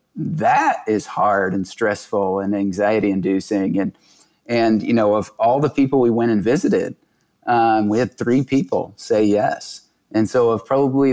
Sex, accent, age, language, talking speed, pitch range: male, American, 30-49, English, 160 wpm, 105-120 Hz